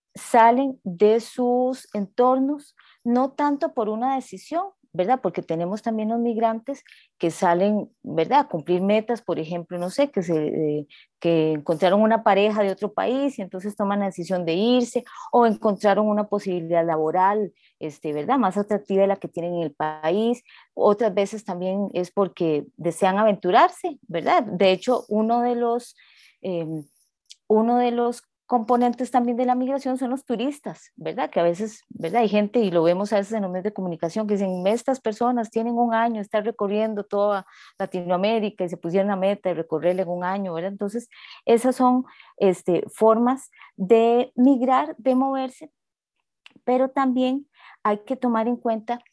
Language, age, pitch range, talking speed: Spanish, 30-49, 190-245 Hz, 170 wpm